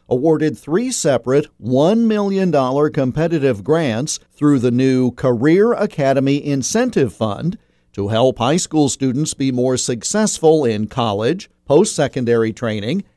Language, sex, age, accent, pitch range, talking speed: English, male, 50-69, American, 120-165 Hz, 120 wpm